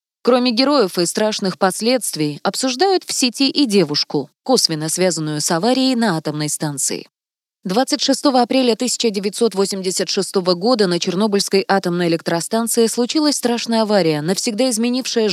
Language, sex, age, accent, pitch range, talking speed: Russian, female, 20-39, native, 180-245 Hz, 115 wpm